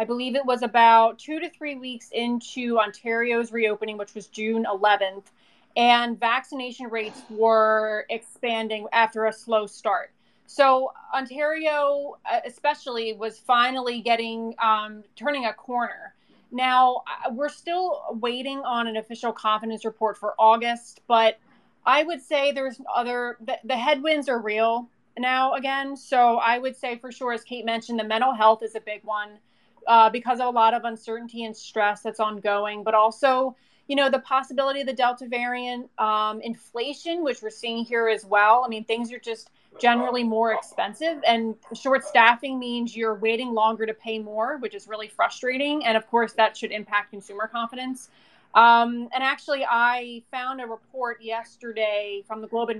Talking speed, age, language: 165 wpm, 20-39, English